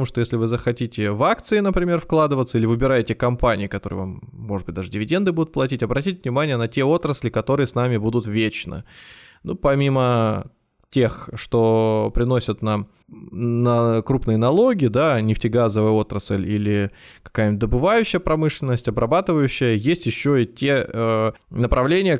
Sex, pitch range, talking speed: male, 115-145 Hz, 140 wpm